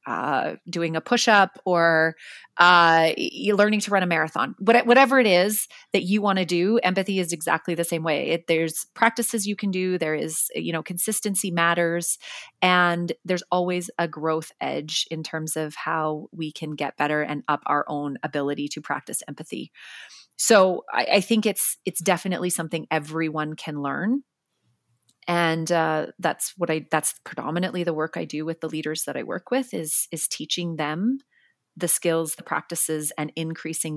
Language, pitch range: English, 160-195 Hz